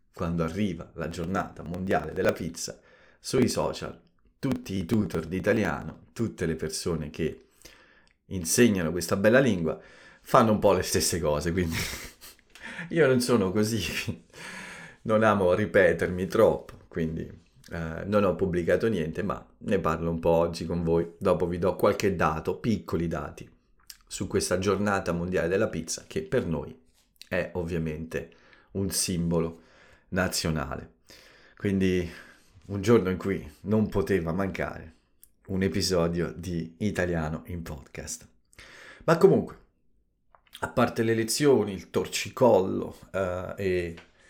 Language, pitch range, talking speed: Italian, 85-100 Hz, 130 wpm